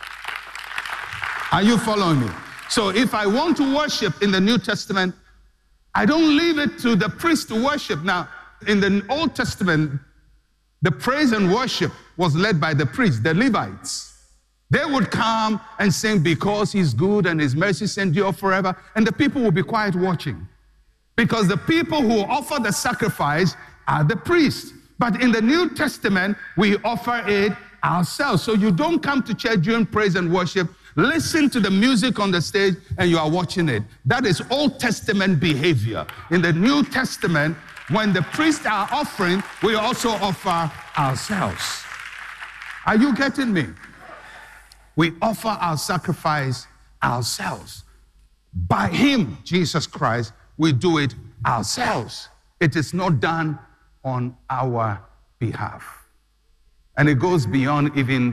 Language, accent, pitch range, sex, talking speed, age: English, Nigerian, 150-225 Hz, male, 150 wpm, 60-79